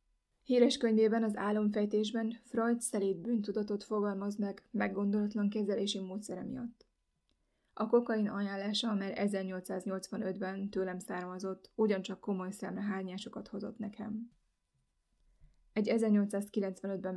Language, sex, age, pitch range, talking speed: Hungarian, female, 20-39, 195-220 Hz, 95 wpm